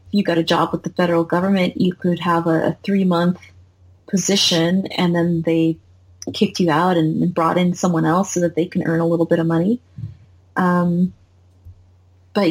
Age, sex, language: 20-39, female, English